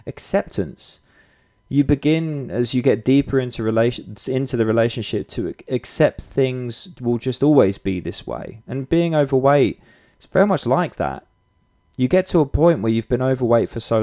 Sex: male